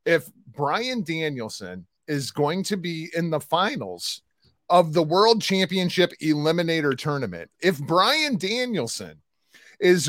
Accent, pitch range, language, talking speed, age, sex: American, 150-205 Hz, English, 120 wpm, 30-49, male